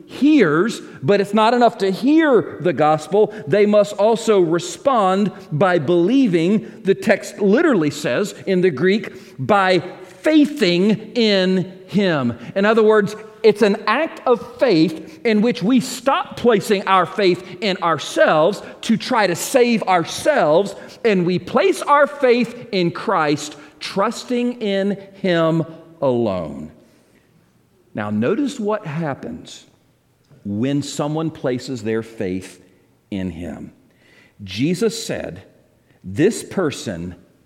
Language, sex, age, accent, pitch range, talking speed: English, male, 40-59, American, 145-215 Hz, 120 wpm